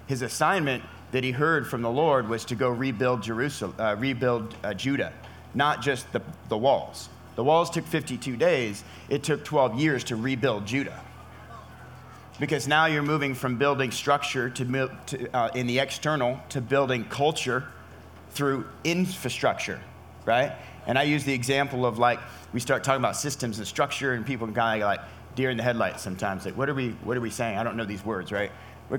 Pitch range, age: 115-150 Hz, 30-49